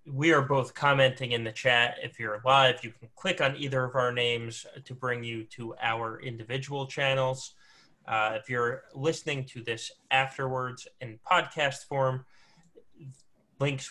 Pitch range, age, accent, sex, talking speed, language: 115-135 Hz, 20-39, American, male, 155 wpm, English